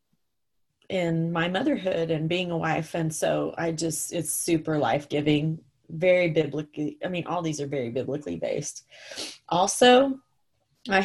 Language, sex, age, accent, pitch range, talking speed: English, female, 30-49, American, 165-250 Hz, 140 wpm